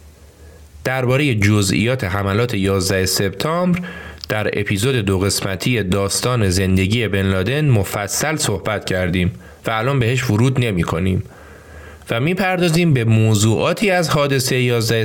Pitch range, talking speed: 100-135 Hz, 115 wpm